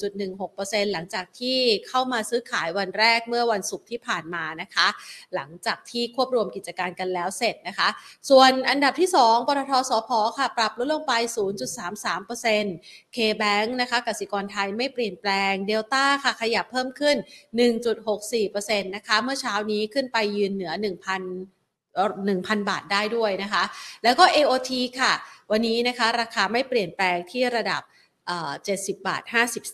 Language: Thai